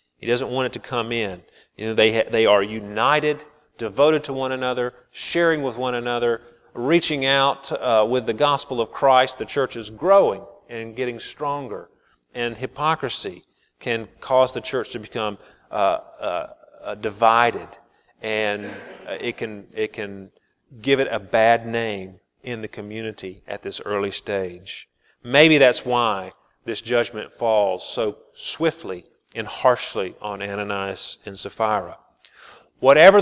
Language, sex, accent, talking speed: English, male, American, 150 wpm